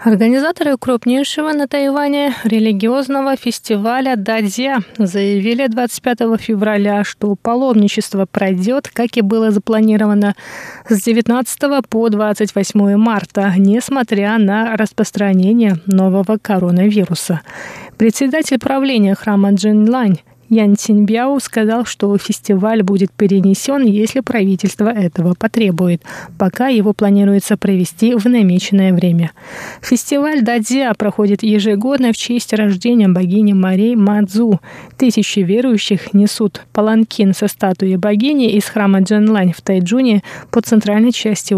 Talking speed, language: 110 wpm, Russian